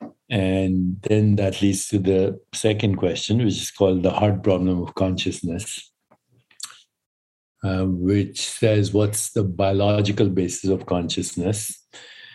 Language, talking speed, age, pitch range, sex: English, 120 wpm, 60-79, 90-105 Hz, male